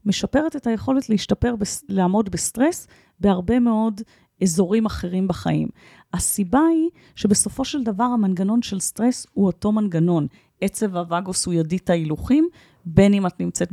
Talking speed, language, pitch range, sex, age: 140 wpm, Hebrew, 170-225 Hz, female, 30-49